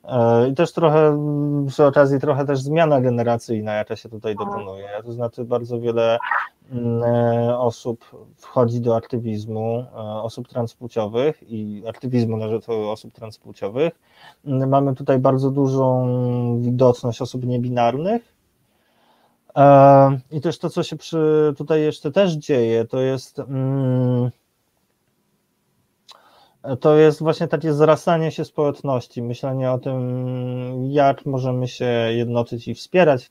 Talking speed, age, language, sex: 120 wpm, 20-39, Polish, male